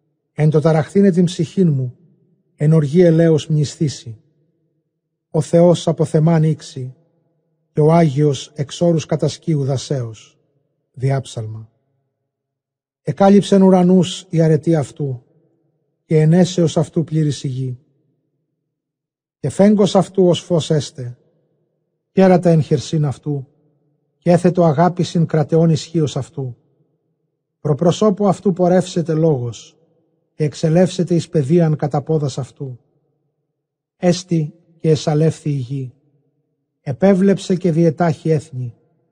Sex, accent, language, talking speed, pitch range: male, native, Greek, 100 wpm, 145-170 Hz